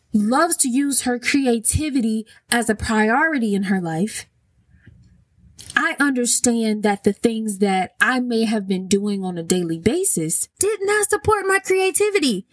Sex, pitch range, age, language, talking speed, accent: female, 195-280 Hz, 20-39, English, 150 wpm, American